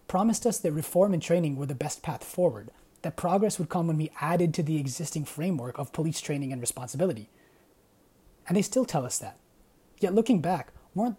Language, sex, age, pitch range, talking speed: English, male, 20-39, 145-180 Hz, 200 wpm